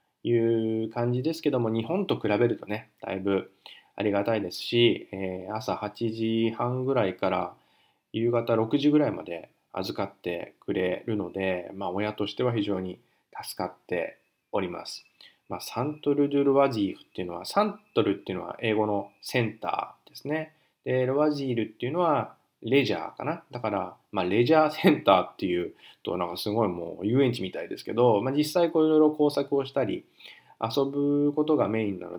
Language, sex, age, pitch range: Japanese, male, 20-39, 105-145 Hz